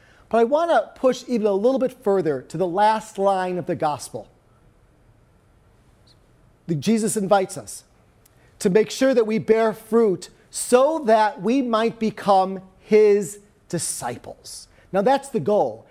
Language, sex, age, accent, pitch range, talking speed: English, male, 40-59, American, 195-235 Hz, 145 wpm